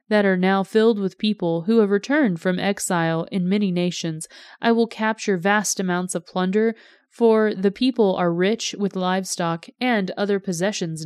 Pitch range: 185-235 Hz